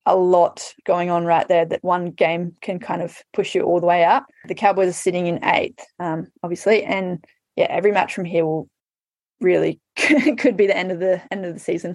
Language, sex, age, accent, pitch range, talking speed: English, female, 10-29, Australian, 175-210 Hz, 220 wpm